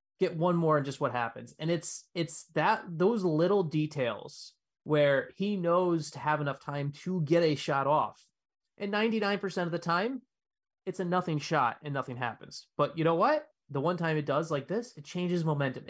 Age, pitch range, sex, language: 20-39, 135-170 Hz, male, English